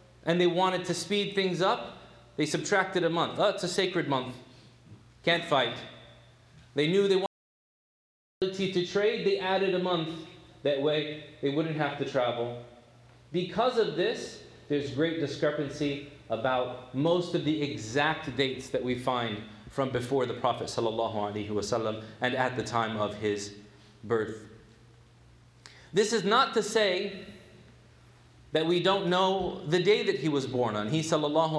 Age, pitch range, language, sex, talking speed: 30-49, 125-175 Hz, English, male, 155 wpm